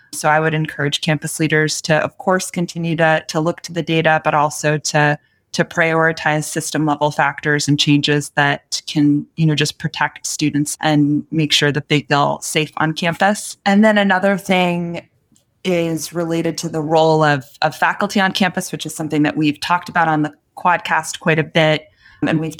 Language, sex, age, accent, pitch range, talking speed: English, female, 20-39, American, 155-170 Hz, 190 wpm